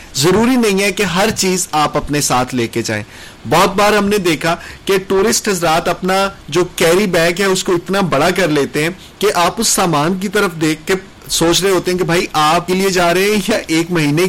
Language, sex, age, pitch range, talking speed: Urdu, male, 30-49, 155-190 Hz, 225 wpm